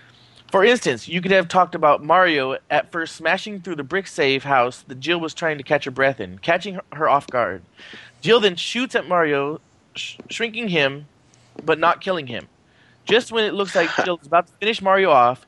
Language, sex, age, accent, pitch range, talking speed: English, male, 20-39, American, 140-185 Hz, 200 wpm